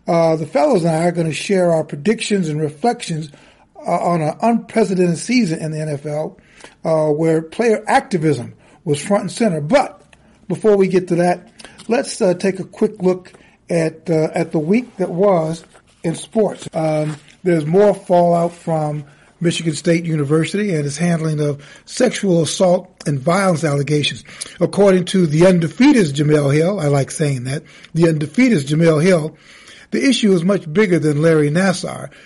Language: English